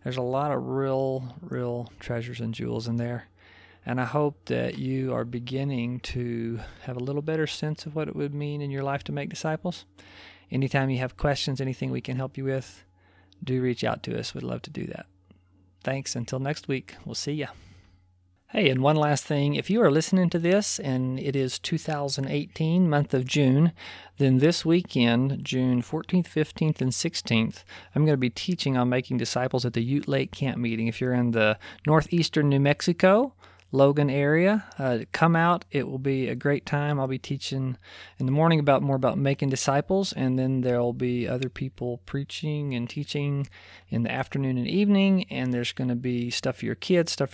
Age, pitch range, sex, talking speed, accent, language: 40-59, 120-145 Hz, male, 195 wpm, American, English